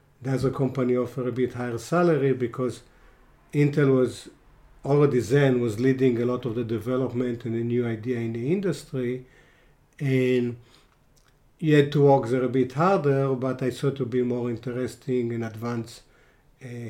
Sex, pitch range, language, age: male, 120-140 Hz, English, 50-69